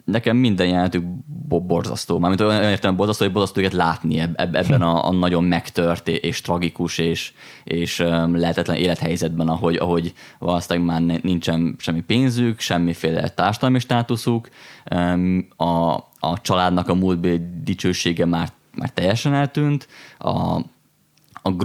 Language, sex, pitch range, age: Hungarian, male, 85-95 Hz, 20-39